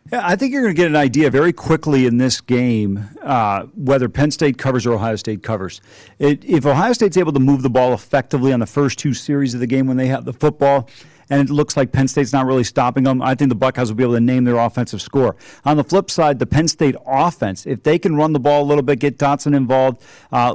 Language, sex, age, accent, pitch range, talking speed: English, male, 40-59, American, 125-145 Hz, 255 wpm